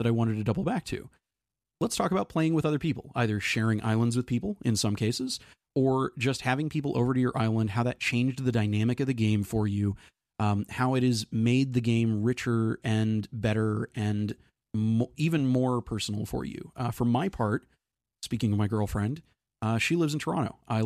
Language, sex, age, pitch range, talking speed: English, male, 30-49, 110-125 Hz, 205 wpm